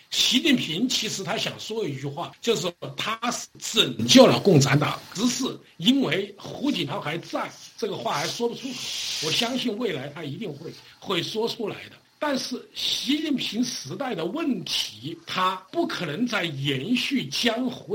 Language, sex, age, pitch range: Chinese, male, 60-79, 155-250 Hz